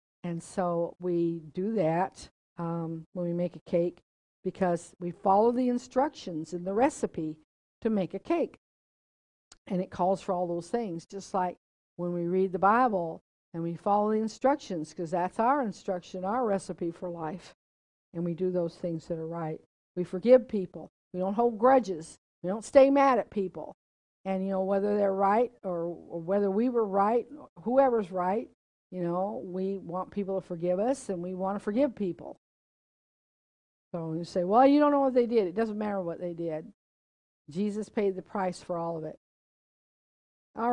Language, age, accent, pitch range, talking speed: English, 50-69, American, 175-220 Hz, 185 wpm